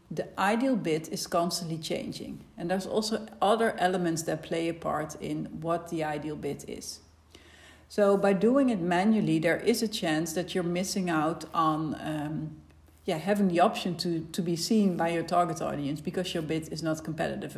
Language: English